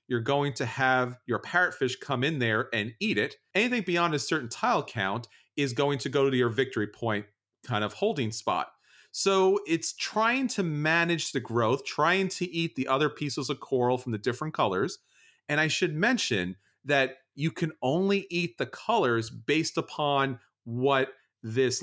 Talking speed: 175 wpm